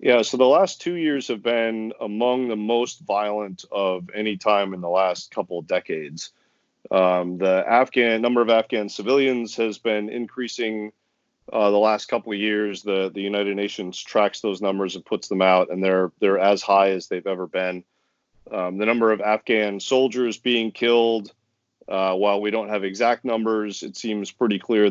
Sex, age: male, 40-59